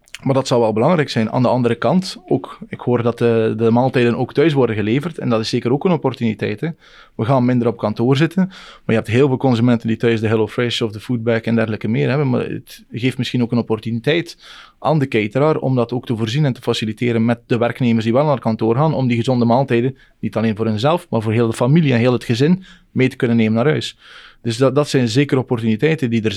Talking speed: 250 wpm